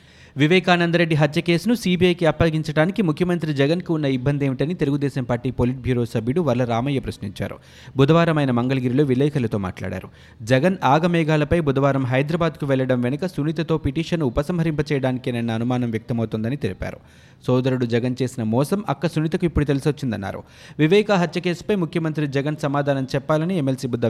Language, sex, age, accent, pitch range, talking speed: Telugu, male, 30-49, native, 130-165 Hz, 130 wpm